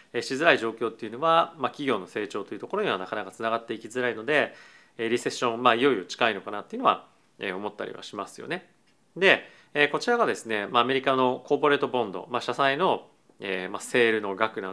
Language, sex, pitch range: Japanese, male, 115-160 Hz